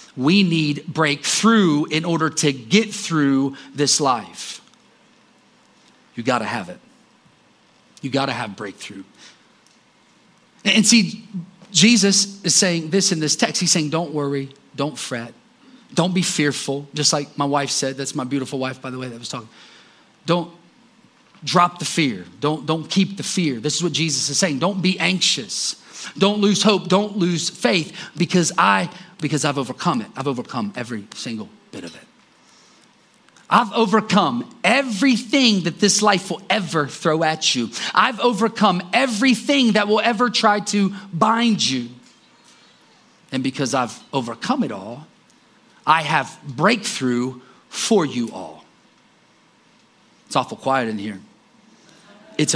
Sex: male